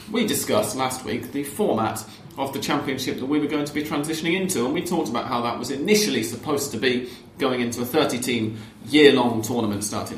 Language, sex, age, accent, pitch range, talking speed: English, male, 30-49, British, 105-130 Hz, 205 wpm